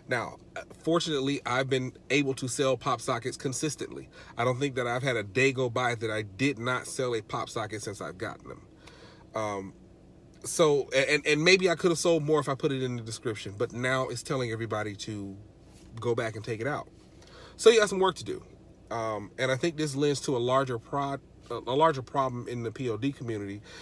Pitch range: 115-140 Hz